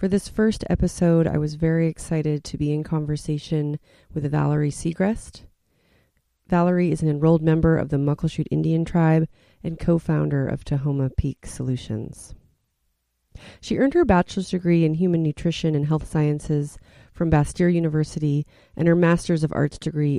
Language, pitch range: English, 140-165 Hz